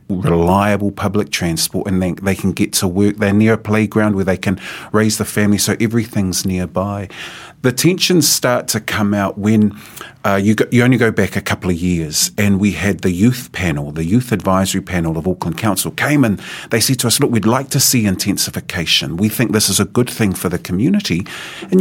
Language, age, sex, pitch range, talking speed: English, 40-59, male, 95-130 Hz, 210 wpm